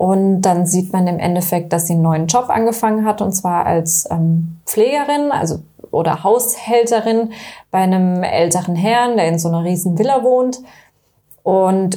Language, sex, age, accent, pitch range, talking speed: German, female, 20-39, German, 175-220 Hz, 165 wpm